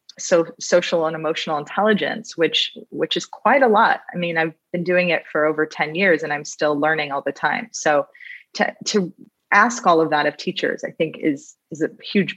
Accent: American